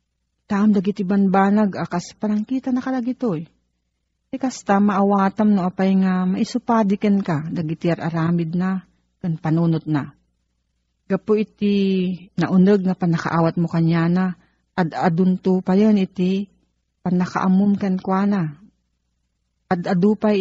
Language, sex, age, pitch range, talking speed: Filipino, female, 40-59, 155-200 Hz, 110 wpm